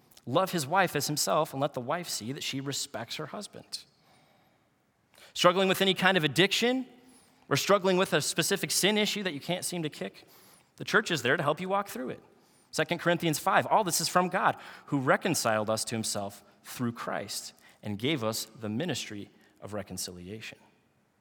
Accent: American